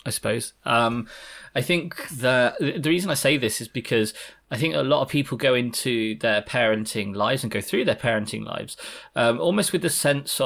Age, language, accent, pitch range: 20-39, English, British, 110-135 Hz